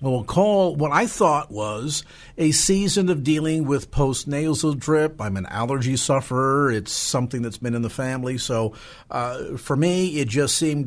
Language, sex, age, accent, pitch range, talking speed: English, male, 50-69, American, 115-155 Hz, 170 wpm